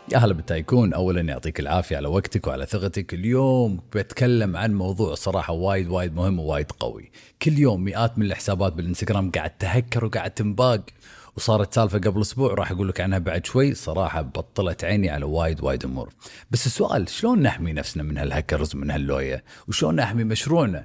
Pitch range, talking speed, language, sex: 90-115 Hz, 165 wpm, Arabic, male